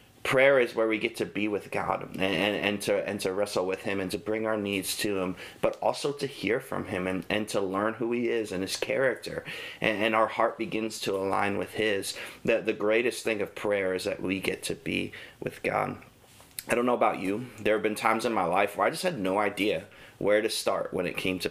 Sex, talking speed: male, 250 wpm